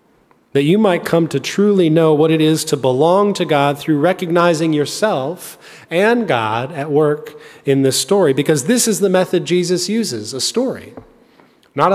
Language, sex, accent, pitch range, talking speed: English, male, American, 130-175 Hz, 170 wpm